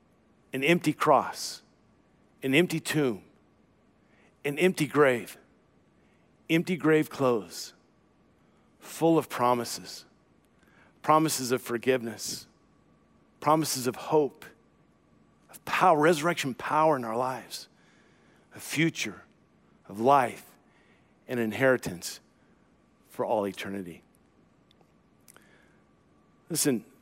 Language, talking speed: English, 85 wpm